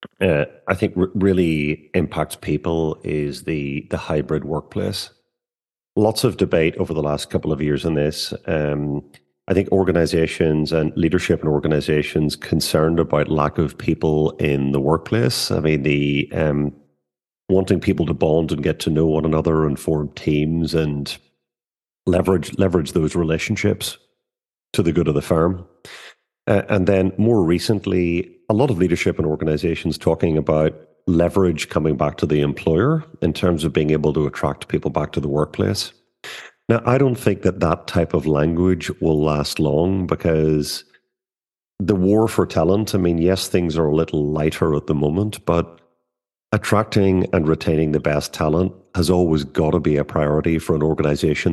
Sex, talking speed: male, 165 wpm